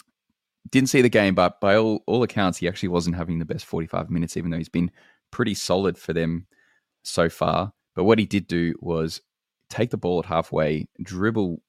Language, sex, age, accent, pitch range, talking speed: English, male, 20-39, Australian, 80-95 Hz, 200 wpm